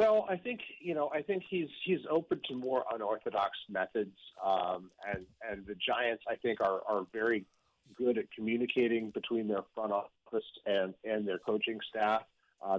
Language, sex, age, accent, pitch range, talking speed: English, male, 40-59, American, 110-135 Hz, 175 wpm